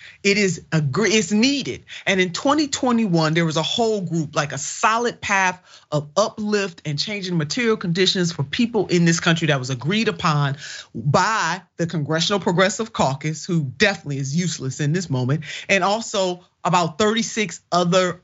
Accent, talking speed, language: American, 160 wpm, English